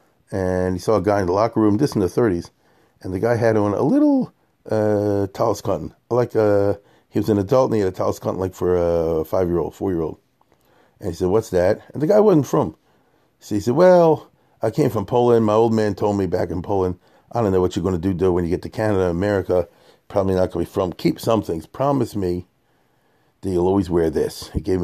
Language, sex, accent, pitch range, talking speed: English, male, American, 90-110 Hz, 240 wpm